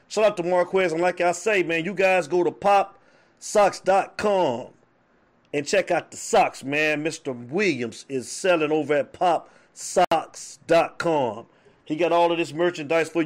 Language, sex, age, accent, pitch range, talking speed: English, male, 30-49, American, 155-185 Hz, 155 wpm